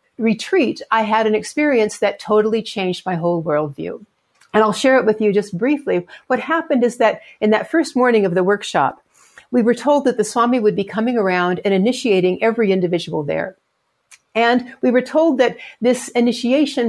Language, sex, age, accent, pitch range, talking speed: English, female, 60-79, American, 205-270 Hz, 185 wpm